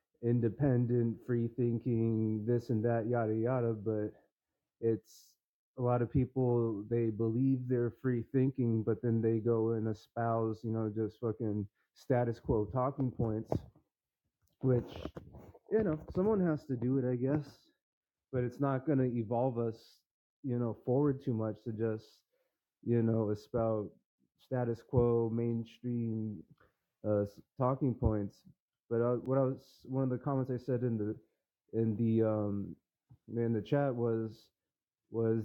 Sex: male